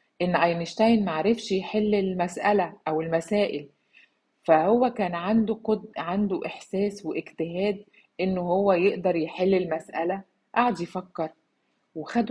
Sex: female